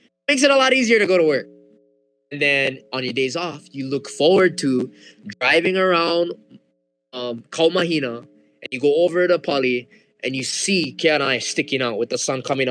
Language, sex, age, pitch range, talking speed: English, male, 20-39, 130-195 Hz, 195 wpm